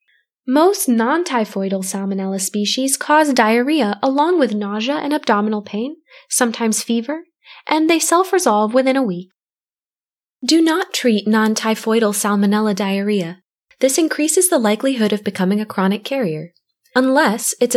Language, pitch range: English, 195-270 Hz